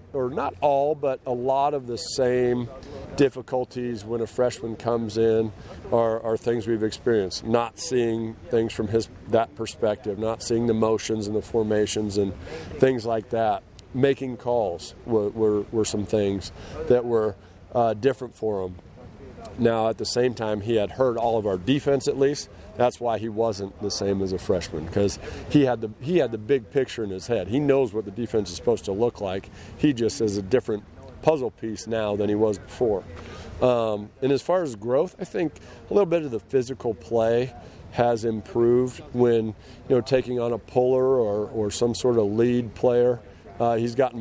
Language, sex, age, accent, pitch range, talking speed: English, male, 40-59, American, 105-125 Hz, 190 wpm